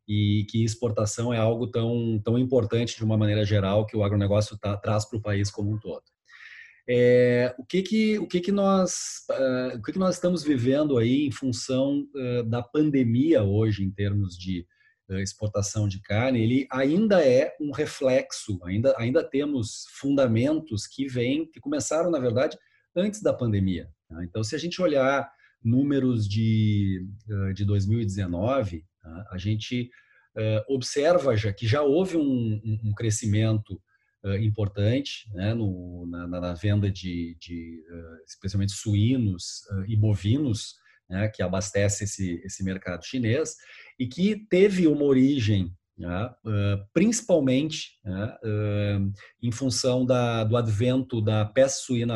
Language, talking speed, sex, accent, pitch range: Portuguese, 140 wpm, male, Brazilian, 100-135 Hz